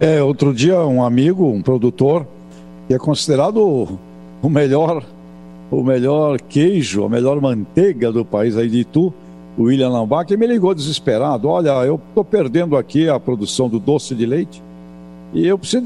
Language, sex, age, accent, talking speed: English, male, 60-79, Brazilian, 155 wpm